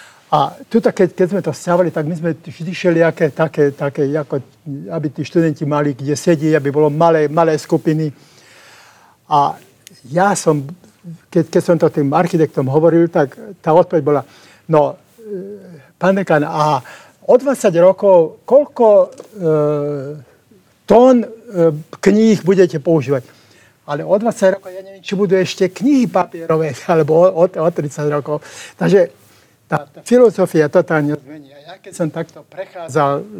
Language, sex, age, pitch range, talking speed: Slovak, male, 60-79, 150-185 Hz, 145 wpm